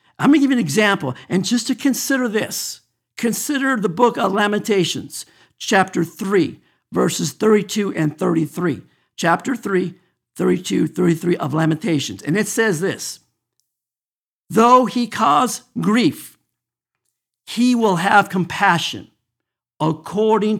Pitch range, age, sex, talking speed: 170-245 Hz, 50-69, male, 120 wpm